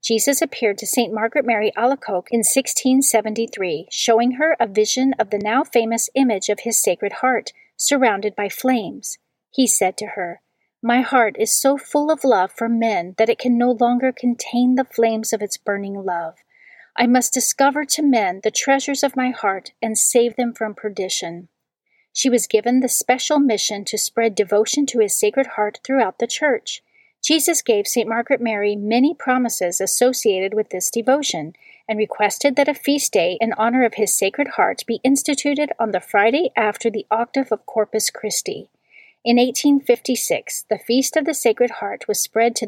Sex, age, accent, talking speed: female, 40-59, American, 175 wpm